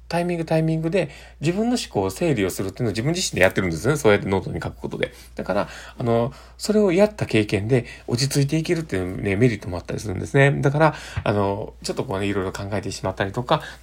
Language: Japanese